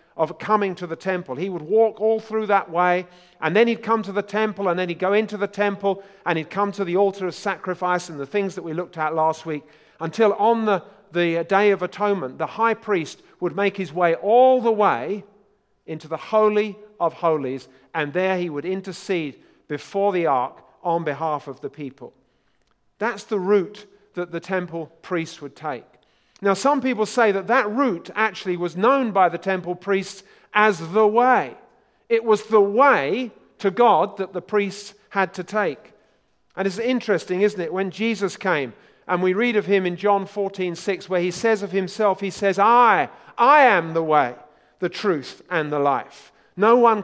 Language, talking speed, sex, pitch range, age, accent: English, 195 wpm, male, 170-210 Hz, 50-69, British